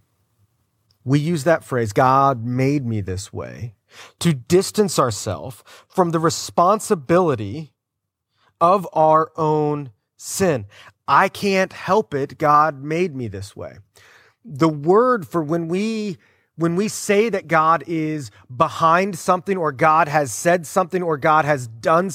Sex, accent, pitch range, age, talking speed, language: male, American, 115-170 Hz, 30-49, 135 wpm, English